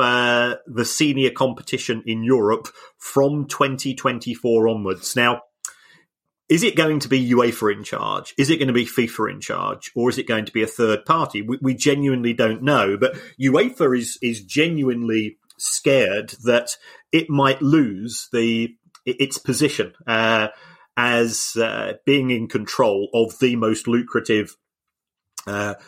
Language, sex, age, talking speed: English, male, 30-49, 150 wpm